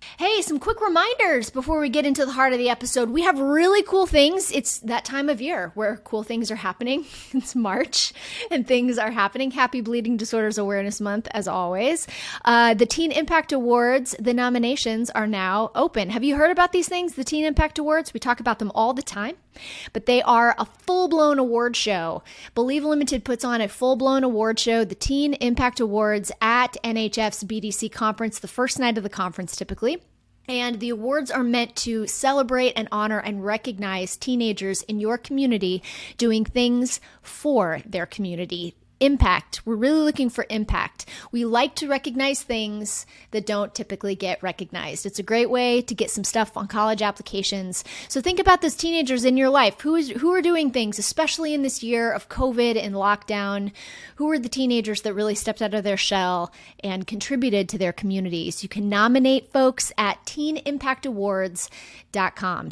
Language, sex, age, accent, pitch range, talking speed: English, female, 30-49, American, 210-270 Hz, 180 wpm